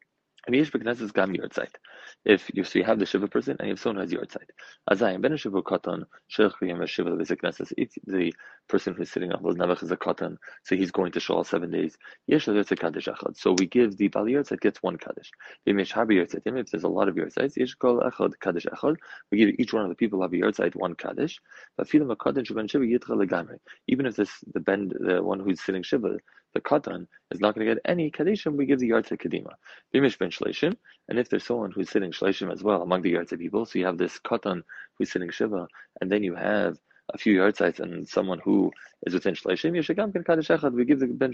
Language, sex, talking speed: English, male, 180 wpm